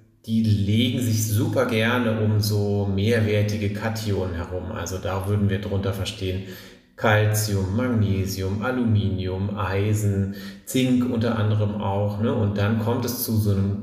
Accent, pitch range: German, 105-120 Hz